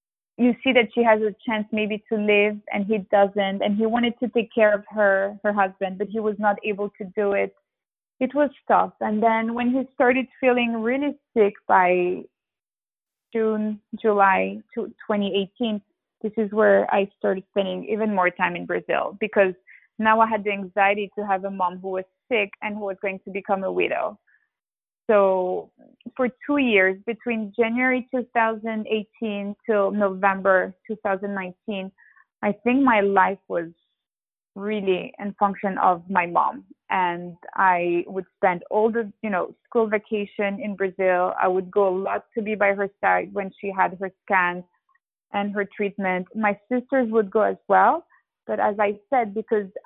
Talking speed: 175 wpm